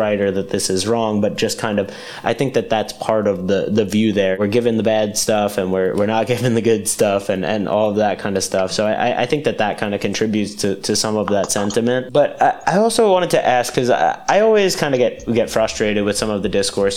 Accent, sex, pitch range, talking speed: American, male, 100-125 Hz, 270 wpm